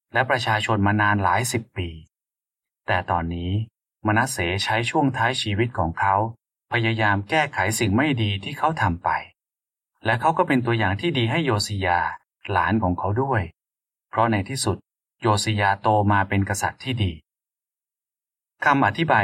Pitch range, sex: 95-125 Hz, male